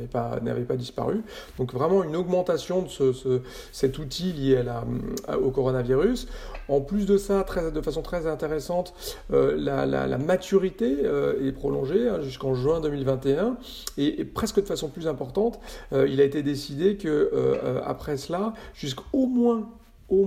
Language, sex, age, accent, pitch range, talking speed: French, male, 40-59, French, 130-180 Hz, 180 wpm